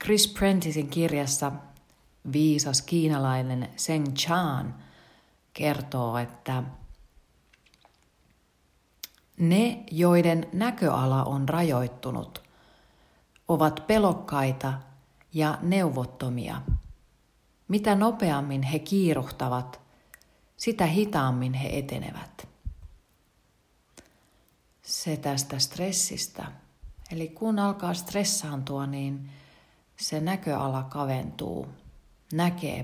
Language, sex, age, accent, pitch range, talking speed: Finnish, female, 40-59, native, 130-165 Hz, 70 wpm